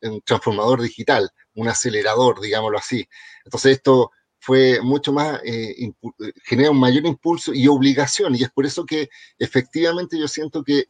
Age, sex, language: 40-59, male, Spanish